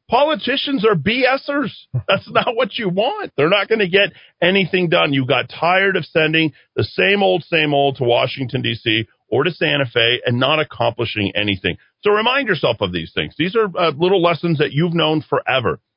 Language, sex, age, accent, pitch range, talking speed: English, male, 40-59, American, 120-175 Hz, 190 wpm